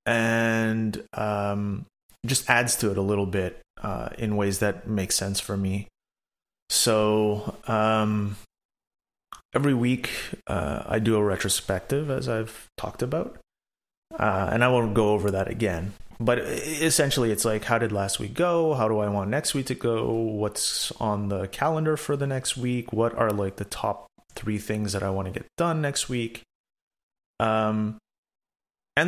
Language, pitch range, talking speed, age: English, 100-120 Hz, 165 wpm, 30-49